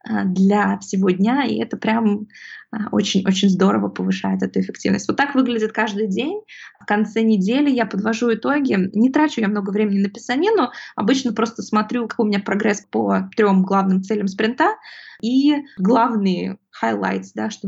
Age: 20-39